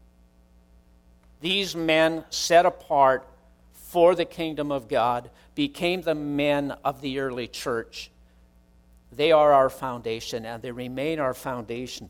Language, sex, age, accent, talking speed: English, male, 60-79, American, 125 wpm